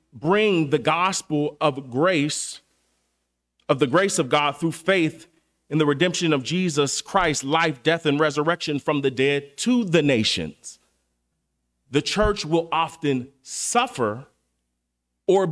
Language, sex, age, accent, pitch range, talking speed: English, male, 30-49, American, 120-170 Hz, 130 wpm